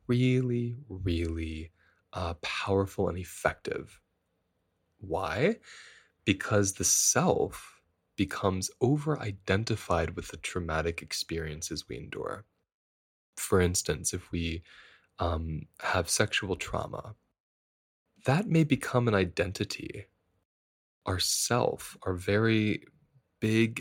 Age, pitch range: 20-39, 85-105 Hz